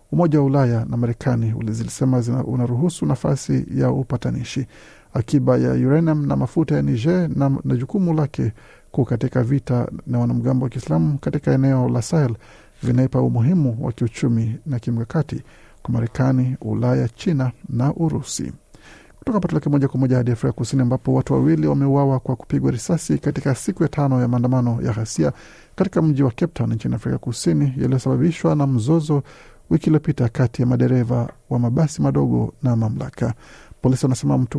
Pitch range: 120-145 Hz